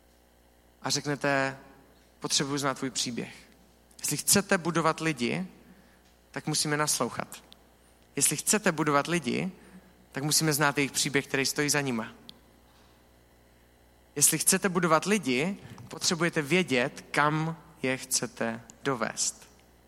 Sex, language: male, Czech